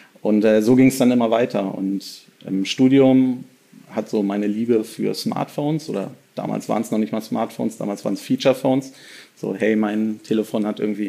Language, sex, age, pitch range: German, male, 40-59, 105-130 Hz